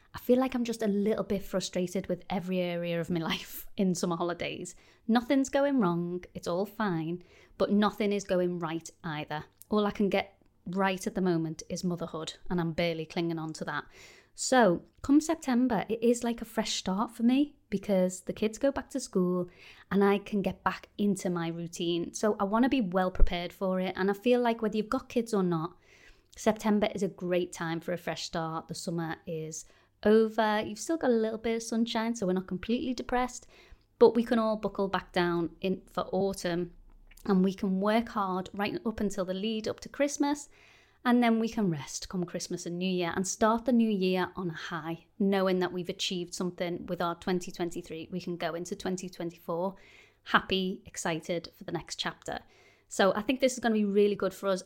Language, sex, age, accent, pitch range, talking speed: English, female, 30-49, British, 175-220 Hz, 210 wpm